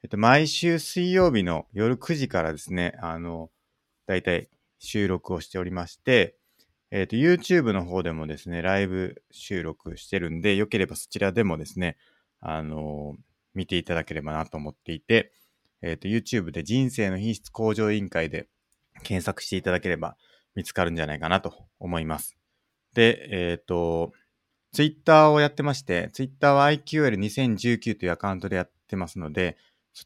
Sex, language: male, Japanese